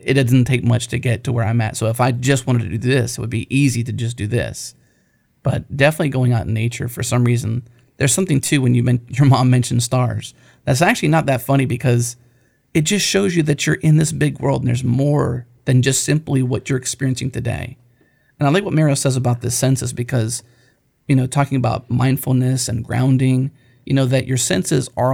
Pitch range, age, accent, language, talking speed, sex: 120-140 Hz, 40-59, American, English, 225 wpm, male